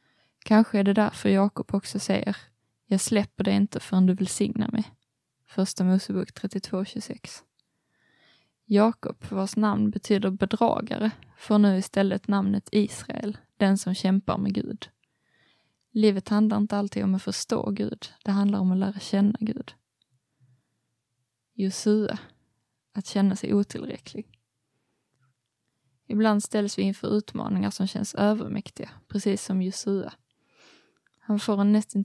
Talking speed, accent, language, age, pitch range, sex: 125 wpm, native, Swedish, 20-39, 190-210 Hz, female